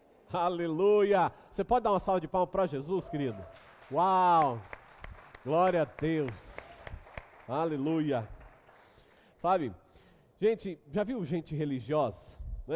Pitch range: 150-195 Hz